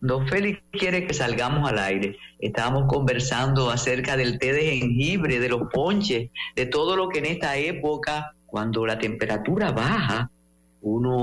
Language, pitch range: English, 110-160 Hz